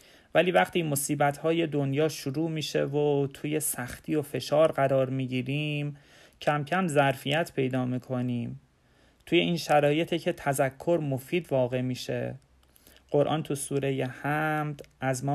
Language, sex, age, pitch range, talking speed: Persian, male, 30-49, 130-155 Hz, 125 wpm